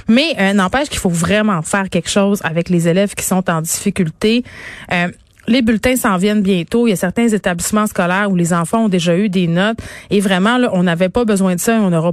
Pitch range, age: 180-215 Hz, 30-49